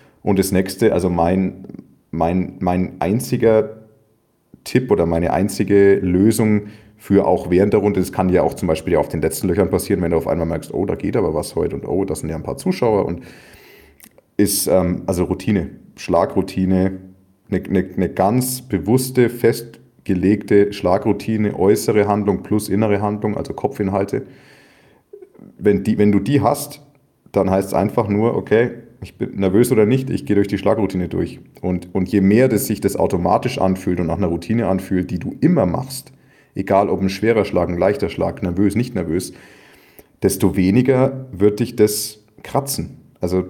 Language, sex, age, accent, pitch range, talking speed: German, male, 30-49, German, 95-110 Hz, 175 wpm